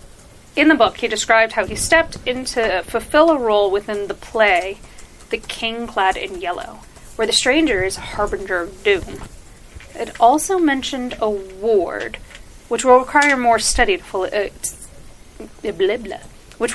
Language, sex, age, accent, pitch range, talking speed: English, female, 30-49, American, 220-275 Hz, 160 wpm